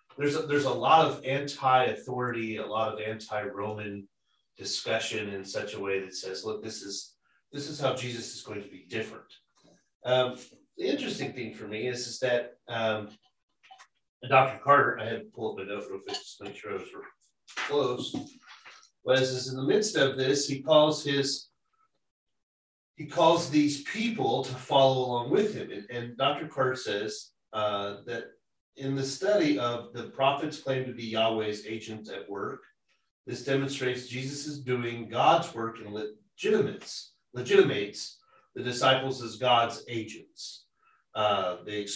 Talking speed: 165 wpm